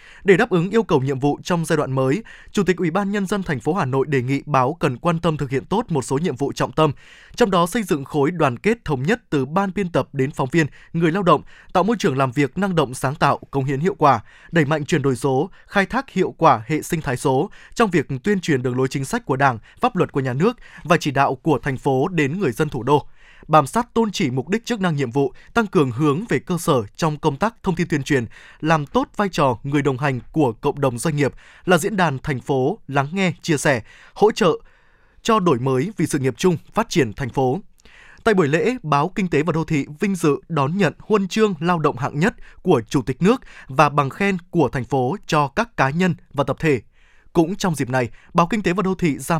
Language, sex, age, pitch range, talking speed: Vietnamese, male, 20-39, 140-185 Hz, 255 wpm